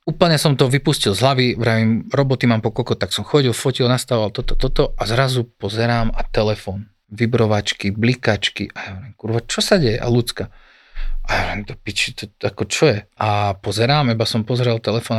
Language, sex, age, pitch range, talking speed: Slovak, male, 40-59, 110-130 Hz, 175 wpm